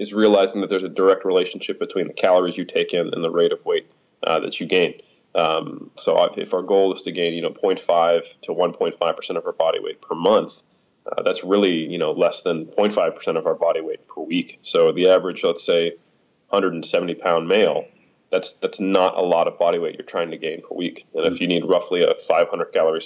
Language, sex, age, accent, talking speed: English, male, 20-39, American, 220 wpm